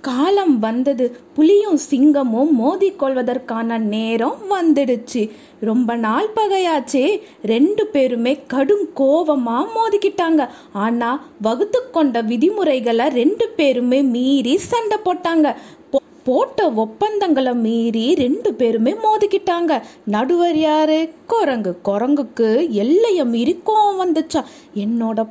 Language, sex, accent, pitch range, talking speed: Tamil, female, native, 240-335 Hz, 90 wpm